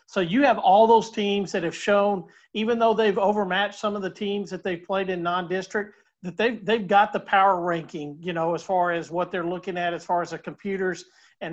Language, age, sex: English, 50-69, male